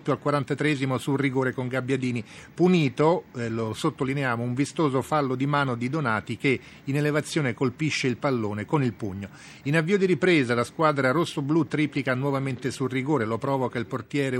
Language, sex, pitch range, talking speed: Italian, male, 125-150 Hz, 170 wpm